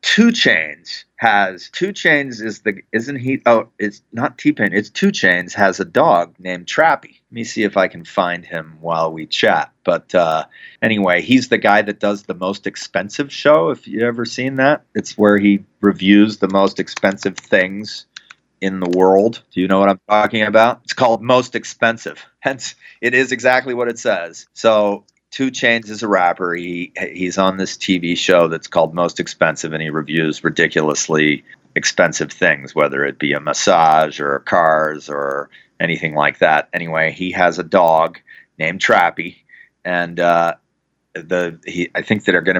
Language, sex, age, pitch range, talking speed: English, male, 30-49, 85-110 Hz, 180 wpm